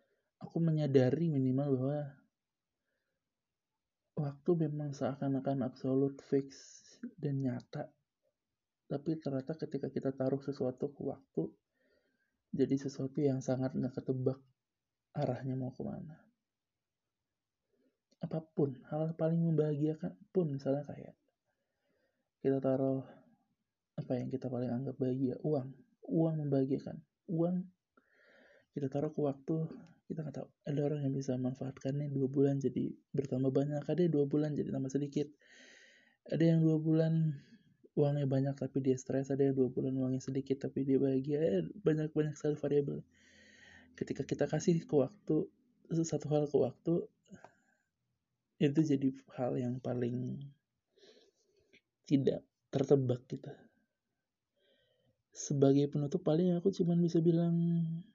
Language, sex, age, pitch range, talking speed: Indonesian, male, 20-39, 135-160 Hz, 120 wpm